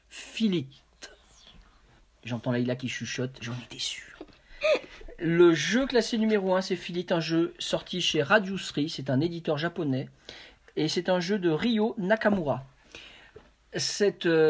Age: 40-59